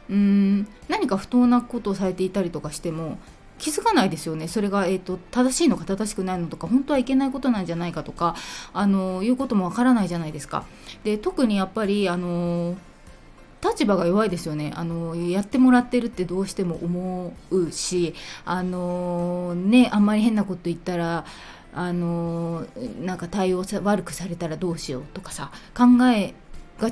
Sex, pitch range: female, 170-235 Hz